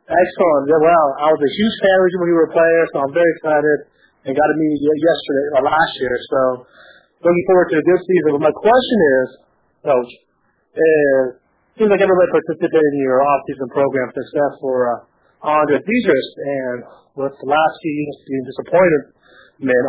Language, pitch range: English, 135-170 Hz